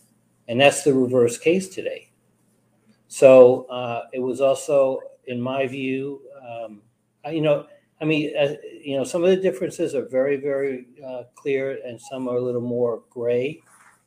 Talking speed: 165 wpm